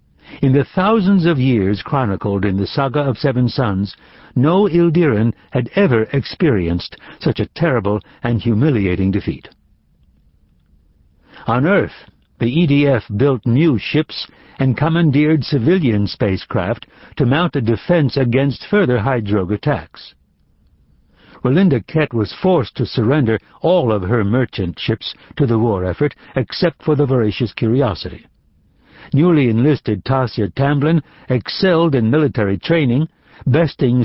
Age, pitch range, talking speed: 60-79, 105-150 Hz, 125 wpm